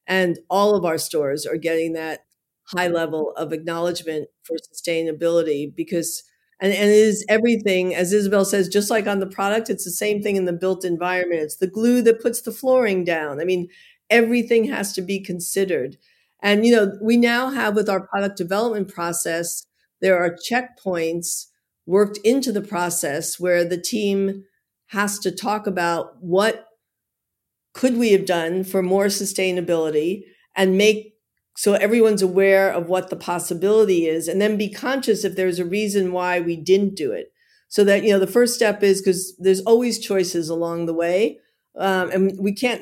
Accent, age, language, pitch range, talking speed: American, 50-69, English, 175-215 Hz, 175 wpm